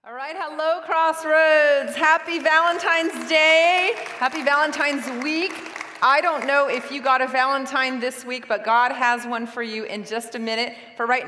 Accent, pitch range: American, 225-290 Hz